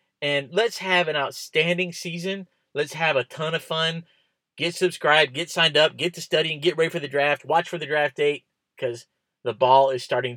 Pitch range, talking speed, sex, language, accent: 130-170 Hz, 205 wpm, male, English, American